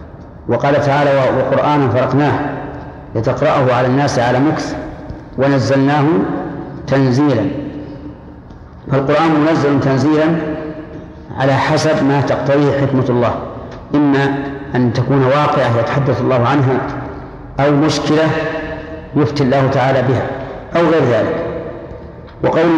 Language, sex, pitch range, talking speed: Arabic, male, 135-155 Hz, 95 wpm